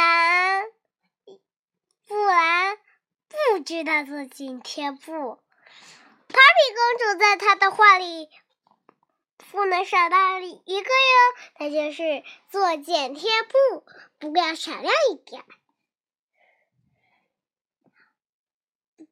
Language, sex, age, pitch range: Chinese, male, 10-29, 300-420 Hz